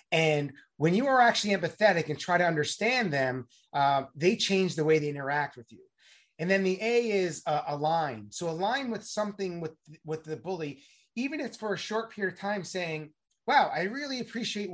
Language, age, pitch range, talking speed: English, 30-49, 150-200 Hz, 200 wpm